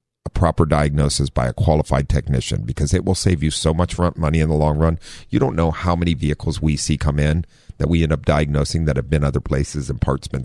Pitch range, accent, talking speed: 75-95 Hz, American, 240 wpm